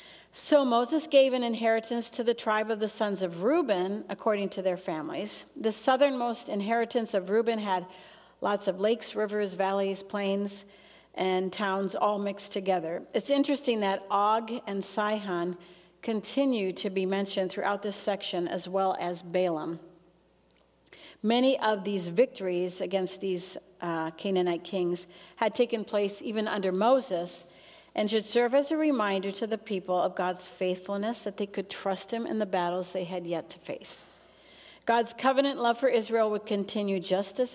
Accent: American